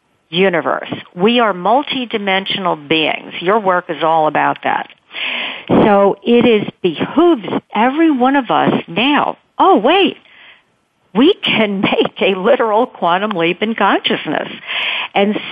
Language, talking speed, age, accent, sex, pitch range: English, 125 wpm, 50-69, American, female, 165-220 Hz